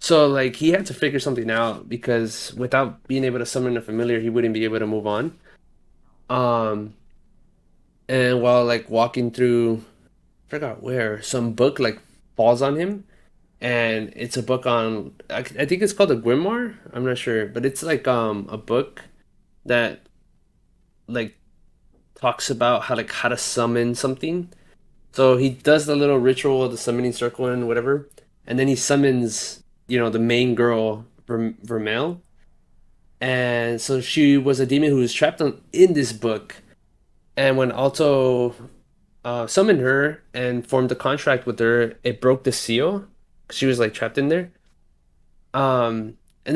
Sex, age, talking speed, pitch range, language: male, 20-39, 165 wpm, 115-135 Hz, English